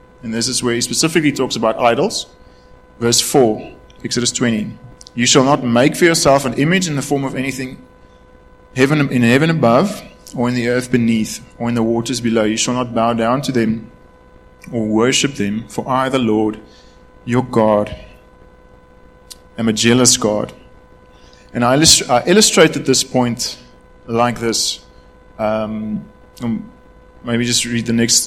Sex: male